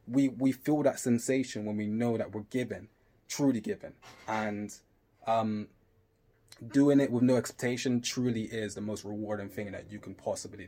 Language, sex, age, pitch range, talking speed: English, male, 20-39, 110-125 Hz, 170 wpm